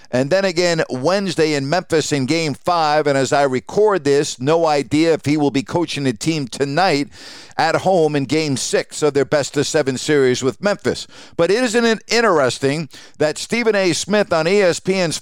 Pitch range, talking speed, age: 150-195 Hz, 185 wpm, 50-69